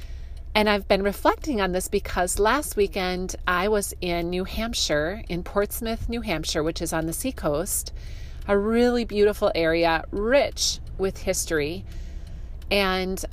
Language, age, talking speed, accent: English, 30-49, 140 wpm, American